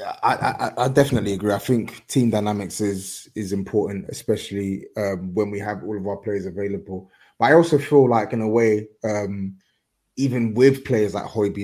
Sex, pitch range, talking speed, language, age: male, 100-115 Hz, 185 wpm, English, 20-39